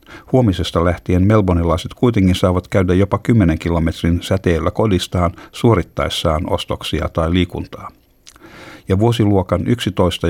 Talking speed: 105 wpm